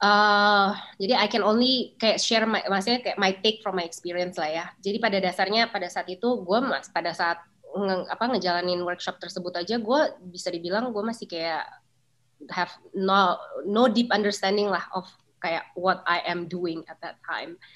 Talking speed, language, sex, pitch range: 180 wpm, Indonesian, female, 175-210 Hz